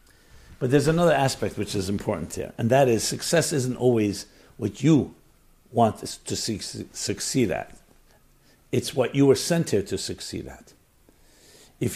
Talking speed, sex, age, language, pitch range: 150 wpm, male, 60-79, English, 120-175 Hz